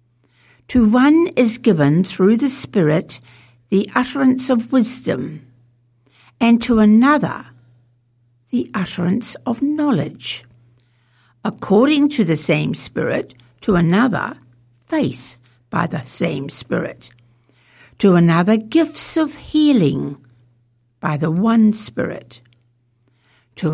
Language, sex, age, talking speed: English, female, 60-79, 100 wpm